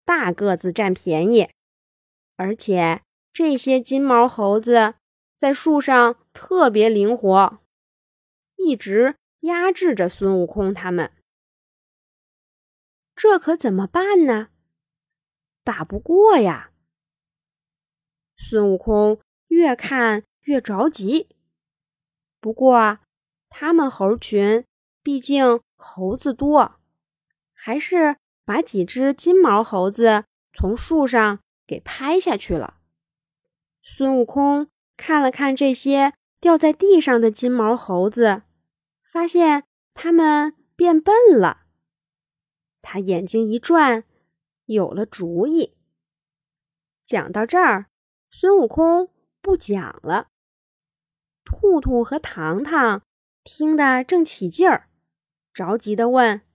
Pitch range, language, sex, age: 195-310 Hz, Chinese, female, 20-39